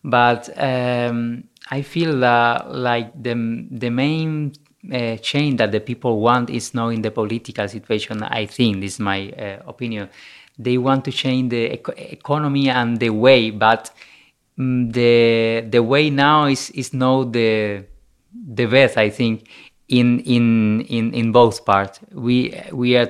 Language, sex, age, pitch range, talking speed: German, male, 30-49, 110-130 Hz, 160 wpm